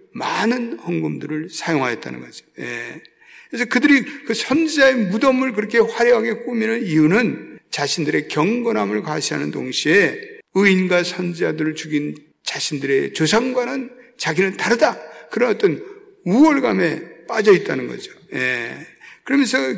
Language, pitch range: Korean, 160-250 Hz